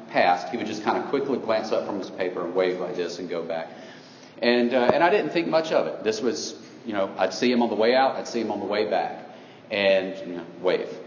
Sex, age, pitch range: male, 40-59, 95-115 Hz